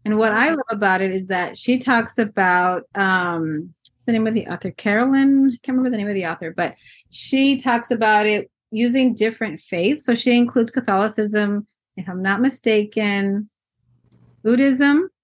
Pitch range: 185-225 Hz